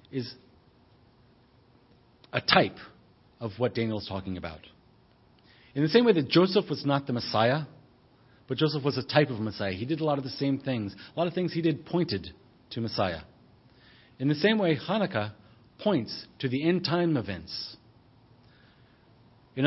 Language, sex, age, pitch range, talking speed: English, male, 40-59, 110-135 Hz, 170 wpm